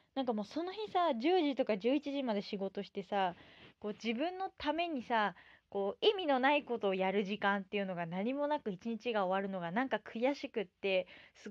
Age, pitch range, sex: 20-39, 190-265 Hz, female